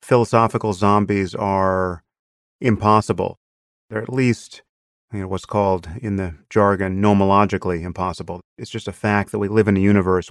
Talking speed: 140 wpm